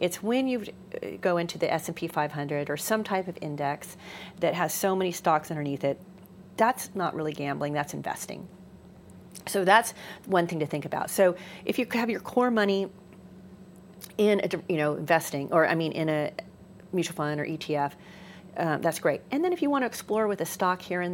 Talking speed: 195 wpm